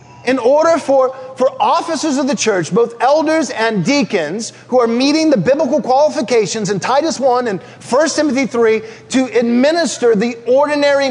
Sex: male